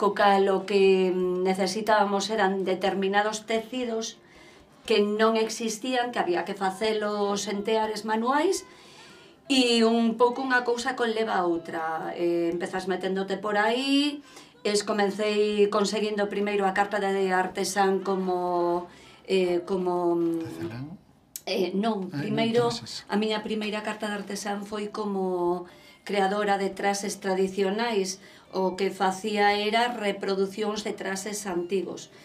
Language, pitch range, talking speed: Spanish, 190-220 Hz, 120 wpm